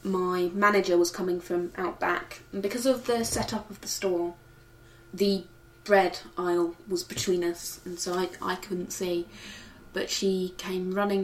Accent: British